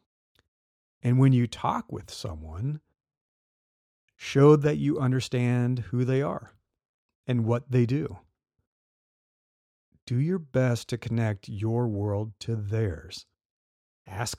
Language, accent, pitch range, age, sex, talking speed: English, American, 100-125 Hz, 40-59, male, 115 wpm